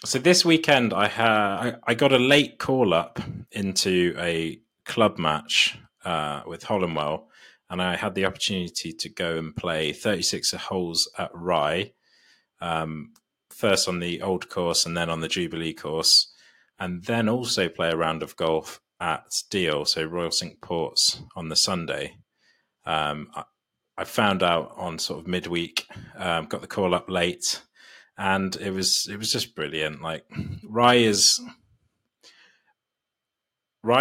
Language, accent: English, British